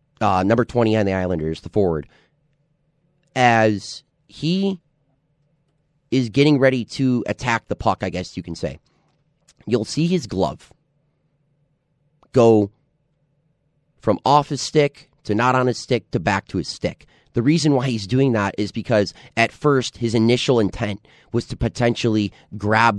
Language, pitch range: English, 110-145 Hz